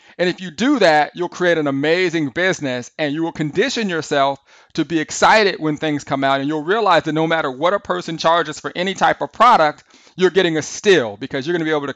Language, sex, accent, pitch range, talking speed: English, male, American, 140-170 Hz, 240 wpm